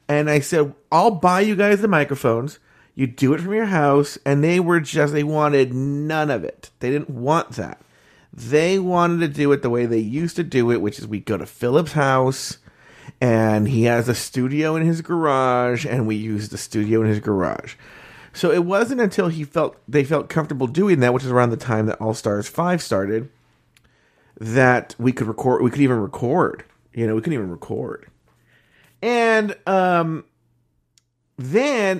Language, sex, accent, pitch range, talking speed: English, male, American, 120-170 Hz, 190 wpm